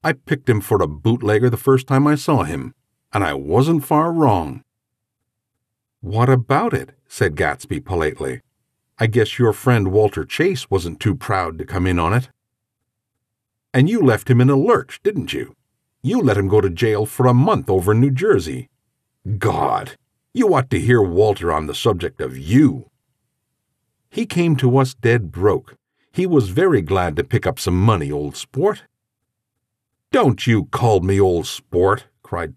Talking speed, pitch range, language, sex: 170 wpm, 110-130 Hz, English, male